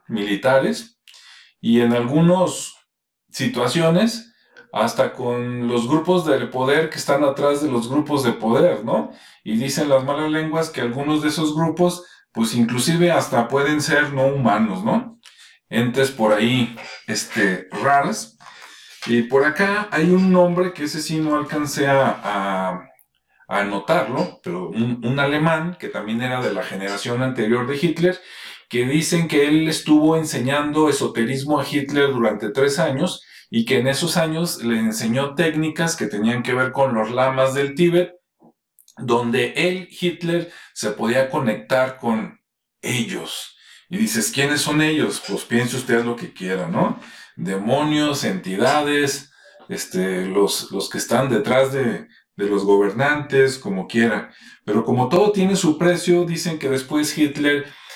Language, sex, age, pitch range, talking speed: Spanish, male, 40-59, 120-160 Hz, 145 wpm